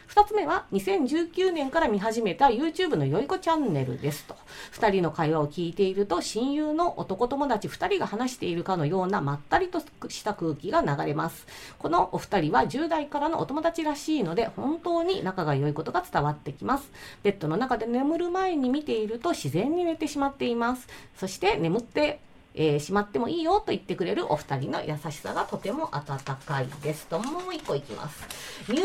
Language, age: Japanese, 40-59